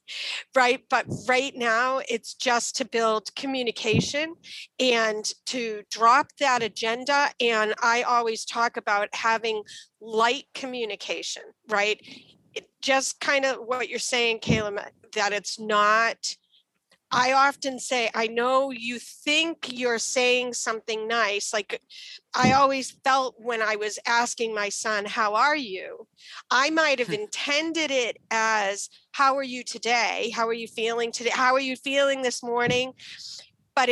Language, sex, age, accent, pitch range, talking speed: English, female, 40-59, American, 225-265 Hz, 140 wpm